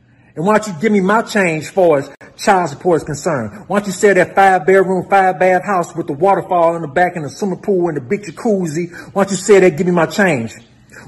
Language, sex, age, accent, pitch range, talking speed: English, male, 40-59, American, 160-205 Hz, 265 wpm